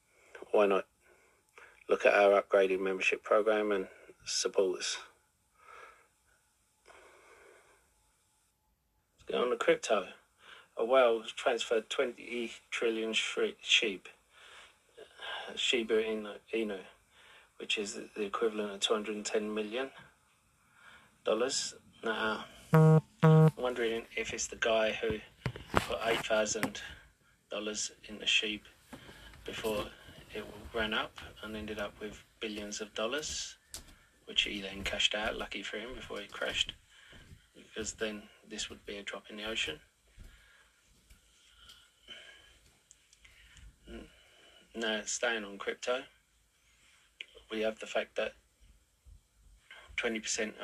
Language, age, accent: English, 30-49, British